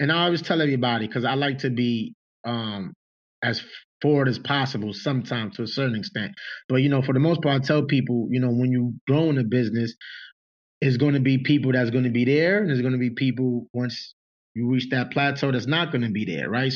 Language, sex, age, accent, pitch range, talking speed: English, male, 20-39, American, 120-145 Hz, 235 wpm